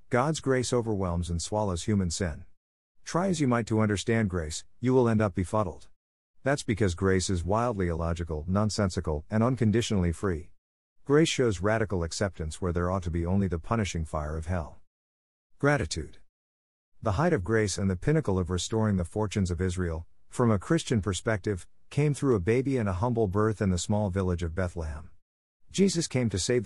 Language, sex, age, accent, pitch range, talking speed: English, male, 50-69, American, 85-115 Hz, 180 wpm